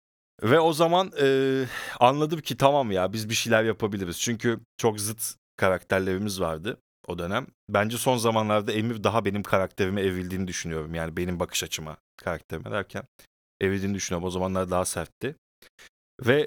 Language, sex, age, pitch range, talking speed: Turkish, male, 30-49, 95-120 Hz, 150 wpm